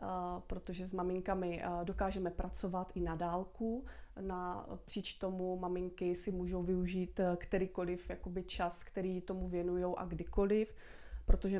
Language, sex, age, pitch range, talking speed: Czech, female, 30-49, 175-190 Hz, 125 wpm